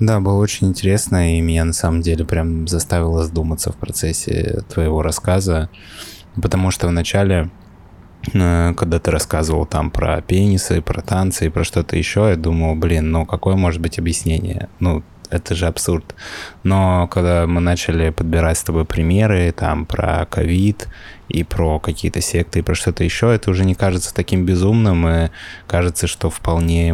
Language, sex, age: Russian, male, 20-39